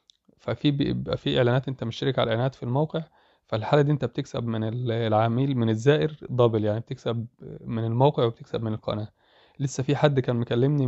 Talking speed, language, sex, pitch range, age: 165 wpm, Arabic, male, 115-135 Hz, 20-39